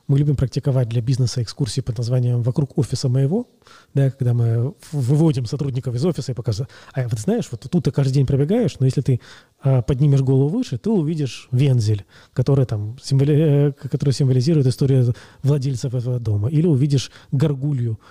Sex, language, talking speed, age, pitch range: male, Russian, 155 wpm, 20-39, 120-145 Hz